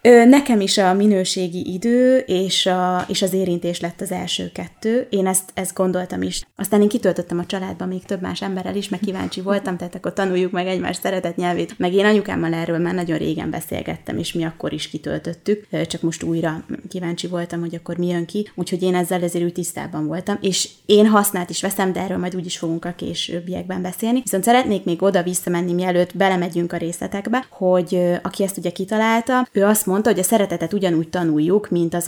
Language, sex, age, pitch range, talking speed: Hungarian, female, 20-39, 170-195 Hz, 200 wpm